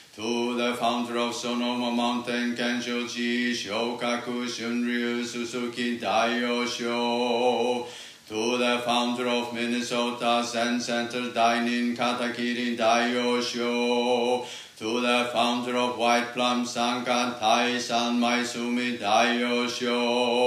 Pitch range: 120-125 Hz